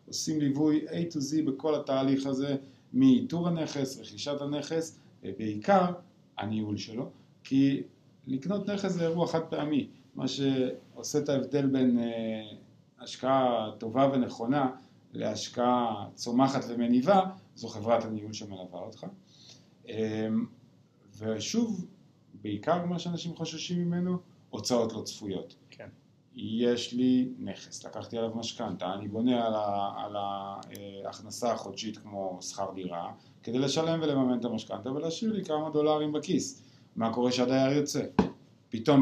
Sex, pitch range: male, 110-150 Hz